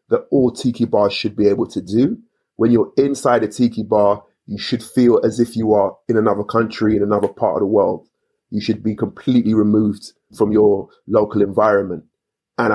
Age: 30-49